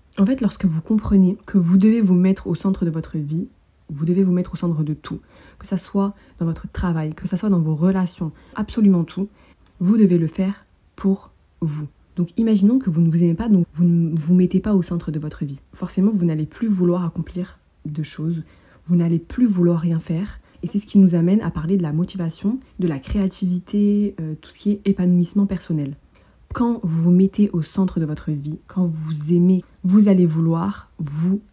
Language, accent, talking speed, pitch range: French, French, 215 wpm, 170-205 Hz